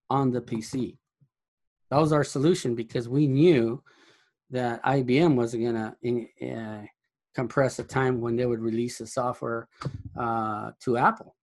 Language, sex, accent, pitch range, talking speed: English, male, American, 115-140 Hz, 145 wpm